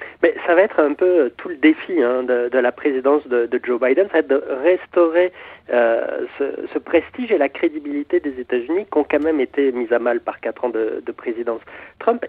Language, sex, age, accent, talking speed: French, male, 40-59, French, 230 wpm